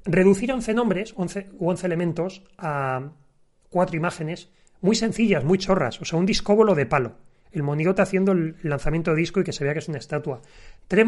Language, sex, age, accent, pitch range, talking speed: Spanish, male, 30-49, Spanish, 140-180 Hz, 190 wpm